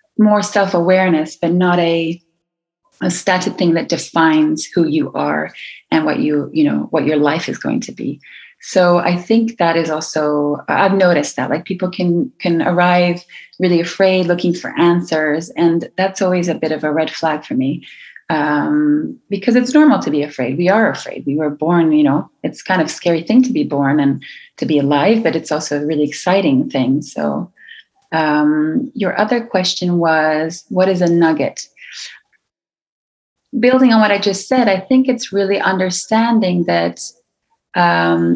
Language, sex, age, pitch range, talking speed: English, female, 30-49, 160-200 Hz, 175 wpm